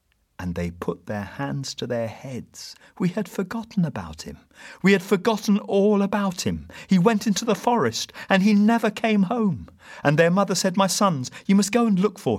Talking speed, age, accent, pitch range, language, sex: 200 wpm, 40-59, British, 105-165 Hz, English, male